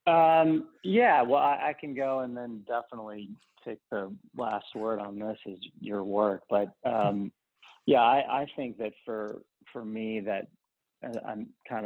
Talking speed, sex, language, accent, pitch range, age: 160 wpm, male, English, American, 100-110 Hz, 30-49